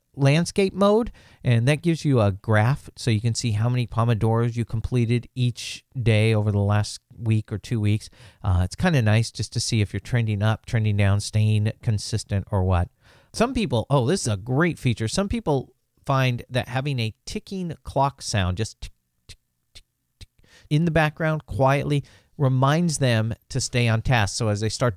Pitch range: 100-130 Hz